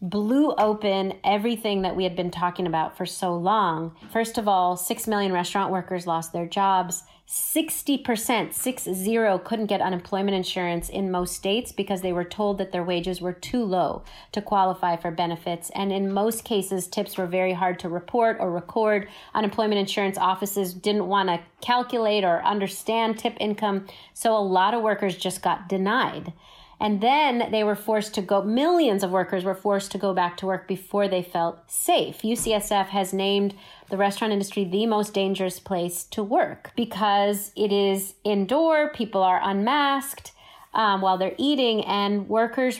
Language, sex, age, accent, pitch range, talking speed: English, female, 30-49, American, 185-220 Hz, 170 wpm